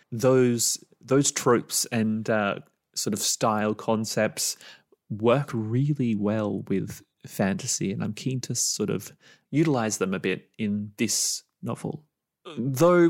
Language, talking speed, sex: English, 130 wpm, male